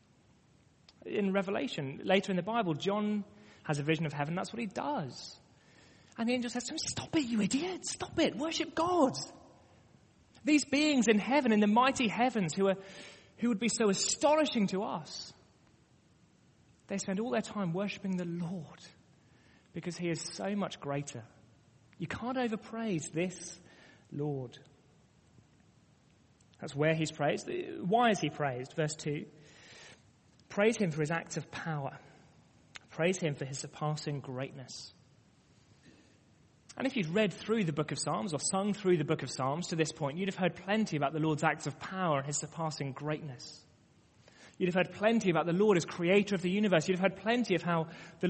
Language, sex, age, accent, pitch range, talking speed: English, male, 30-49, British, 150-215 Hz, 175 wpm